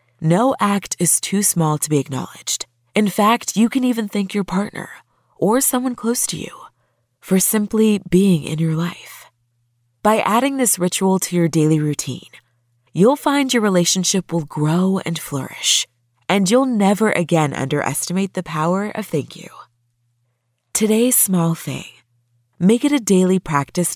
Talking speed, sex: 155 wpm, female